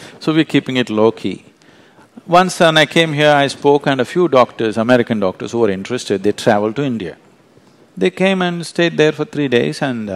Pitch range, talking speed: 110-175 Hz, 205 wpm